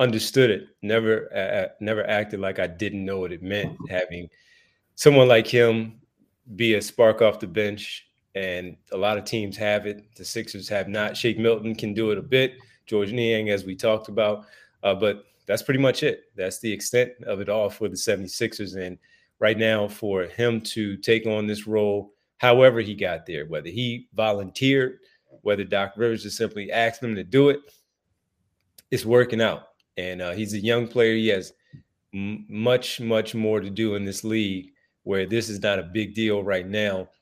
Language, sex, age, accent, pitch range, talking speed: English, male, 30-49, American, 100-115 Hz, 190 wpm